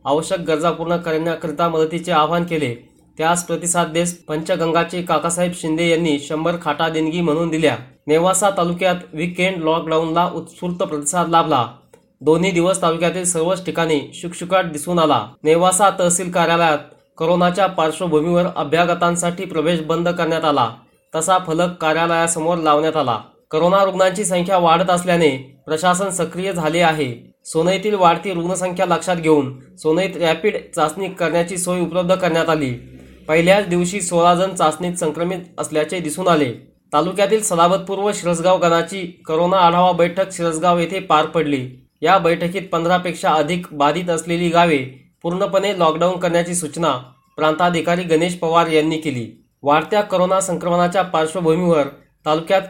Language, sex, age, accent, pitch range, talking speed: Marathi, male, 20-39, native, 160-180 Hz, 80 wpm